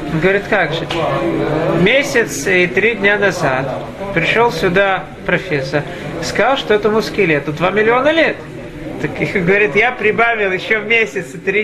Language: Russian